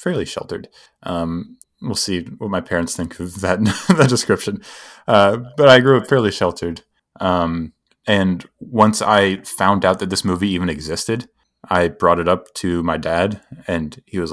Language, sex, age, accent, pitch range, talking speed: English, male, 20-39, American, 85-105 Hz, 170 wpm